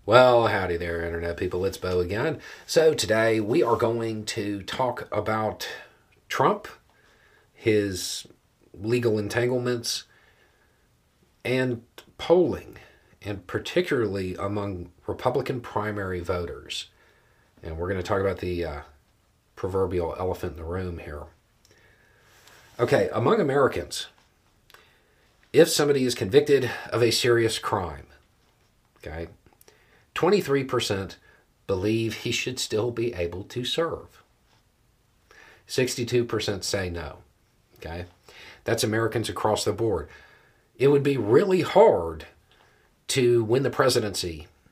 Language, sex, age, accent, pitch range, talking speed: English, male, 40-59, American, 90-120 Hz, 110 wpm